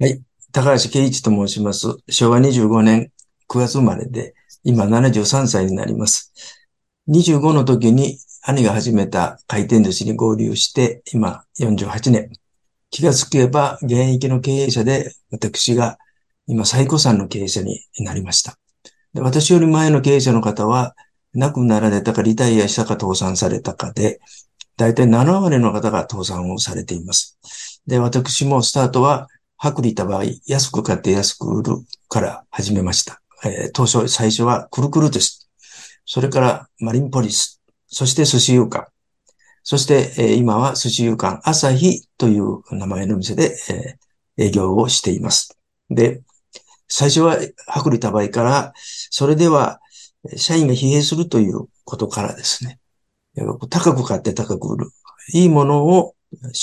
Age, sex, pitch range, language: 50-69, male, 110-140 Hz, Japanese